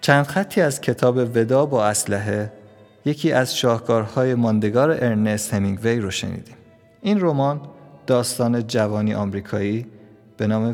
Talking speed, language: 125 wpm, Persian